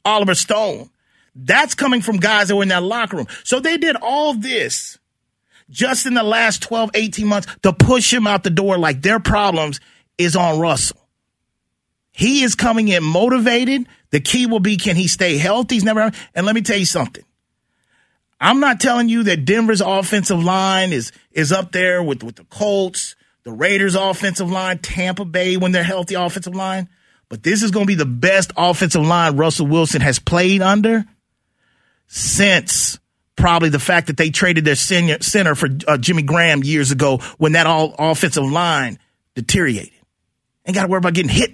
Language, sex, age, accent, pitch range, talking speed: English, male, 30-49, American, 170-225 Hz, 180 wpm